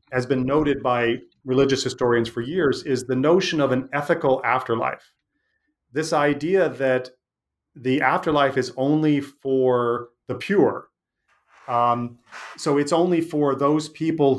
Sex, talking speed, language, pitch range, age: male, 135 wpm, English, 125-150 Hz, 40-59